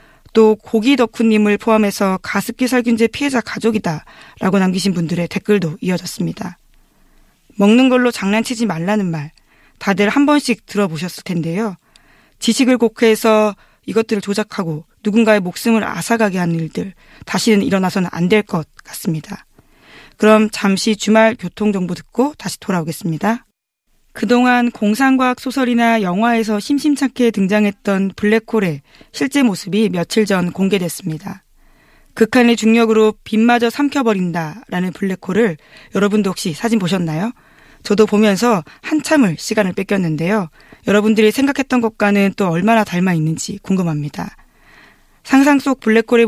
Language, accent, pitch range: Korean, native, 185-230 Hz